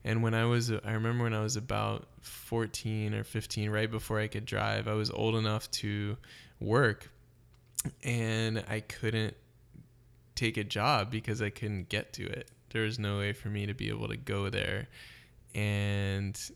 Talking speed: 180 wpm